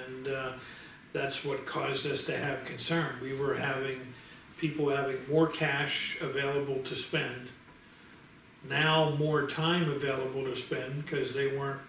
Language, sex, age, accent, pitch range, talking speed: English, male, 50-69, American, 130-150 Hz, 140 wpm